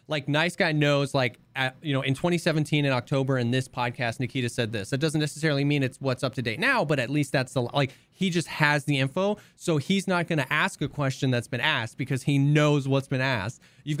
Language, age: English, 20-39